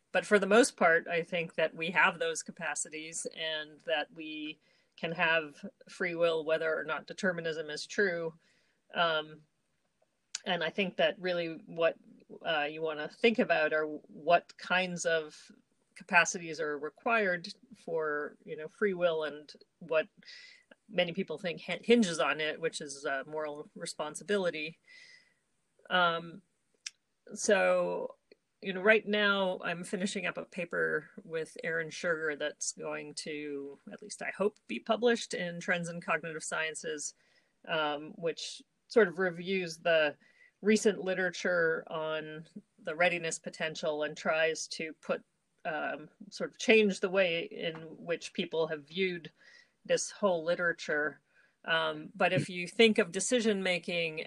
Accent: American